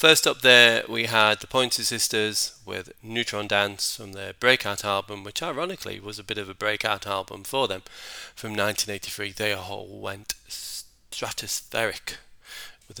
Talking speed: 150 wpm